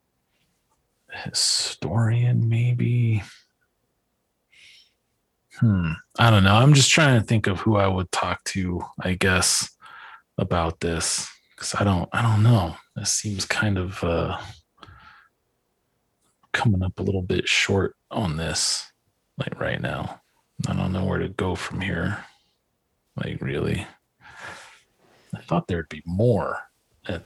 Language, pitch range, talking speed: English, 90-120 Hz, 130 wpm